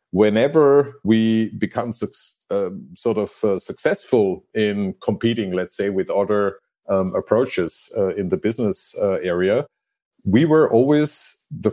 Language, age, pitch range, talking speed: English, 50-69, 105-120 Hz, 135 wpm